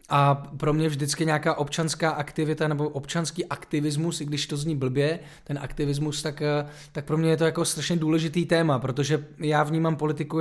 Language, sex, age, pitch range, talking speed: Czech, male, 20-39, 155-175 Hz, 180 wpm